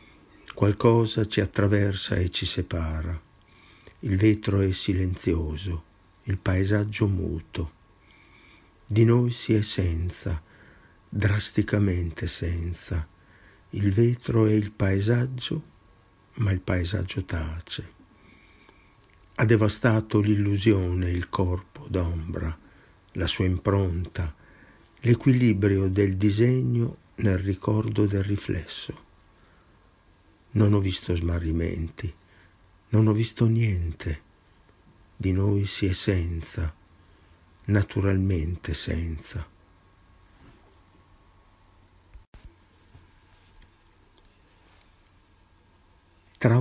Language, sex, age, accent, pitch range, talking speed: Italian, male, 50-69, native, 90-105 Hz, 80 wpm